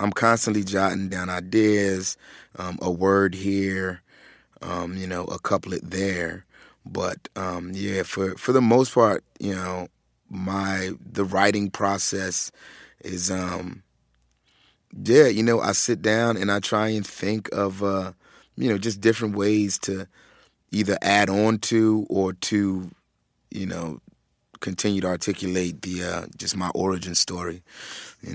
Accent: American